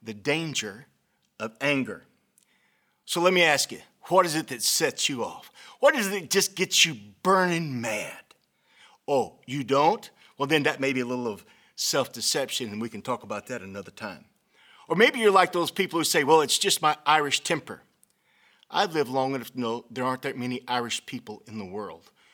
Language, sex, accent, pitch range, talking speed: English, male, American, 115-155 Hz, 200 wpm